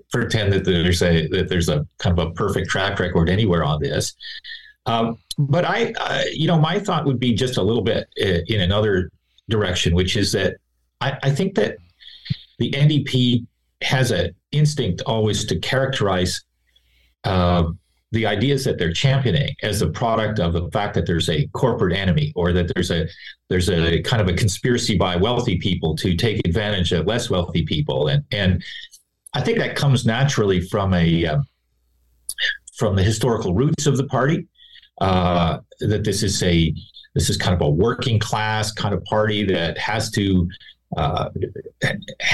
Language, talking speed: English, 175 wpm